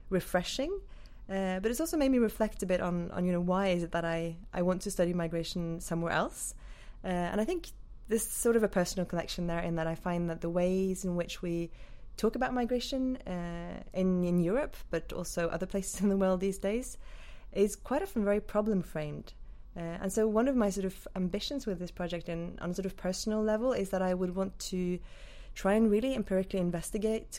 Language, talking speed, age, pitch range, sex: English, 215 wpm, 20-39, 170-205 Hz, female